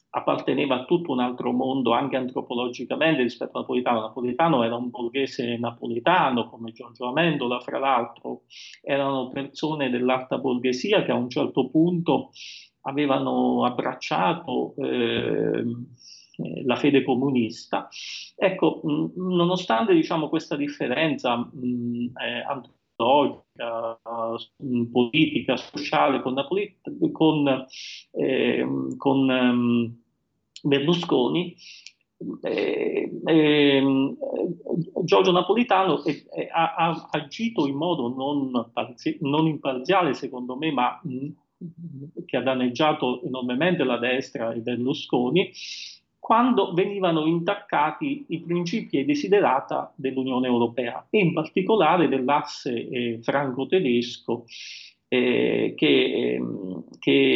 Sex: male